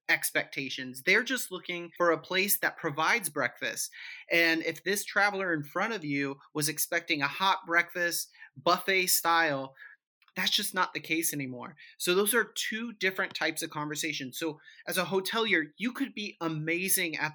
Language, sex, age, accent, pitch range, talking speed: English, male, 30-49, American, 145-180 Hz, 165 wpm